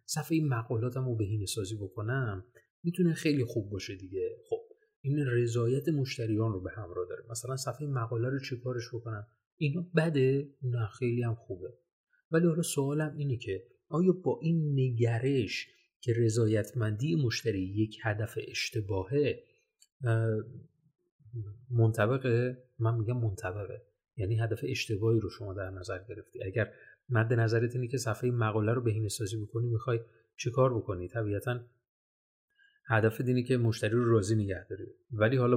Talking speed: 140 wpm